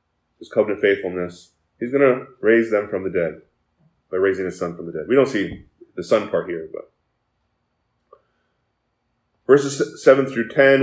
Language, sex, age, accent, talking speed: English, male, 20-39, American, 165 wpm